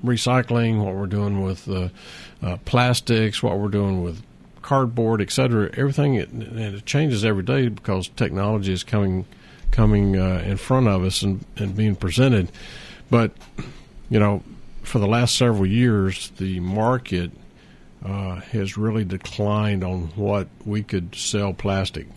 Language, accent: English, American